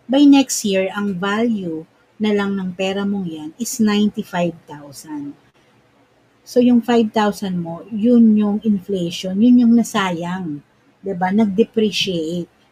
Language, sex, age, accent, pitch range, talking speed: Filipino, female, 50-69, native, 170-225 Hz, 120 wpm